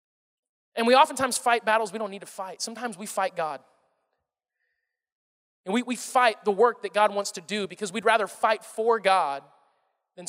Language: English